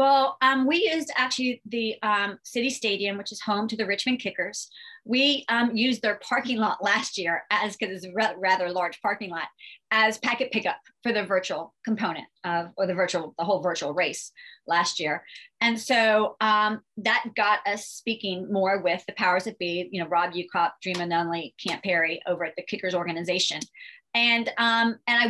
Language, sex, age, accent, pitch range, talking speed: English, female, 30-49, American, 185-235 Hz, 190 wpm